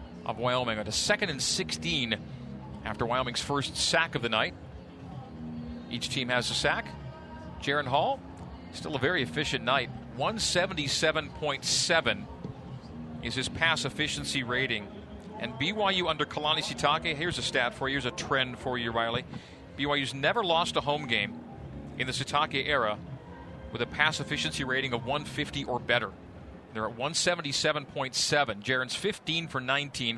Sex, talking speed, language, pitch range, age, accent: male, 145 wpm, English, 120-155 Hz, 40-59, American